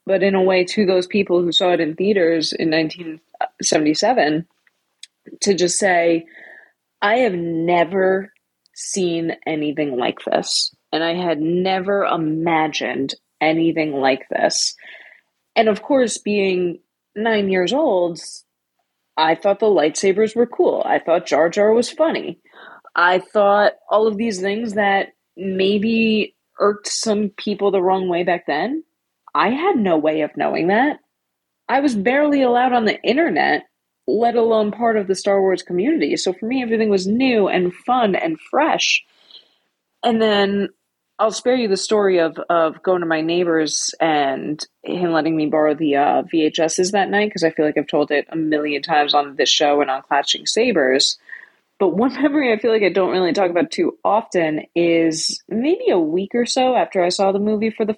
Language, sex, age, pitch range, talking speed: English, female, 20-39, 165-225 Hz, 170 wpm